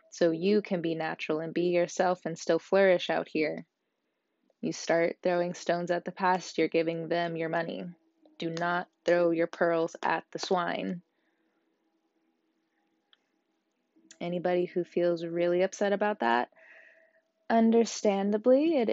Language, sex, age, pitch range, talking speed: English, female, 20-39, 175-240 Hz, 135 wpm